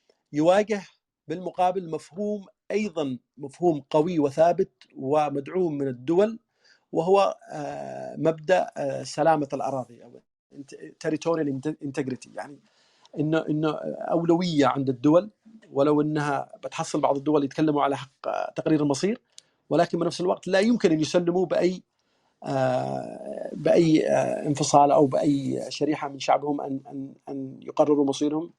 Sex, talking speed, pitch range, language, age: male, 115 wpm, 140-175 Hz, Arabic, 40-59